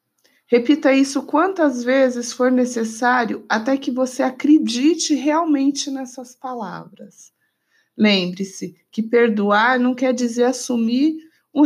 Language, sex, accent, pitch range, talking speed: Portuguese, female, Brazilian, 215-285 Hz, 110 wpm